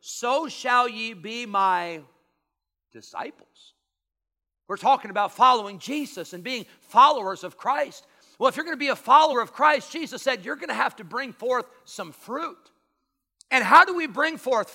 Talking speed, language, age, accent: 165 wpm, English, 50-69, American